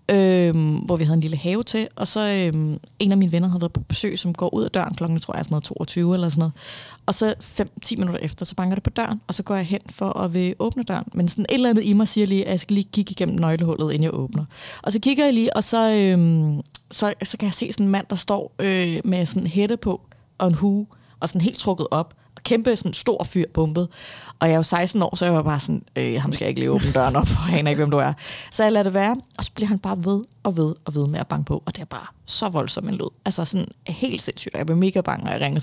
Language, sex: Danish, female